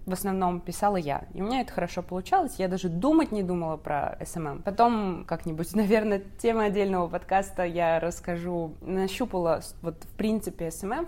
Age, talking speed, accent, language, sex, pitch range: 20-39, 160 wpm, native, Russian, female, 160-205 Hz